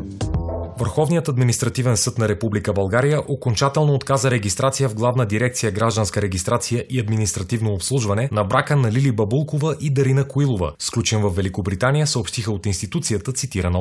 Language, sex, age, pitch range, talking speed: Bulgarian, male, 30-49, 105-130 Hz, 140 wpm